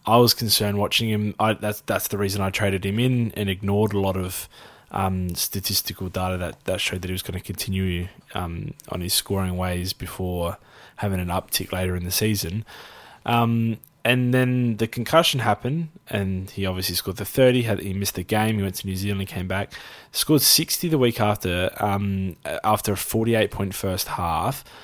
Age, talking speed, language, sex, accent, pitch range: 20-39, 195 wpm, English, male, Australian, 95-115 Hz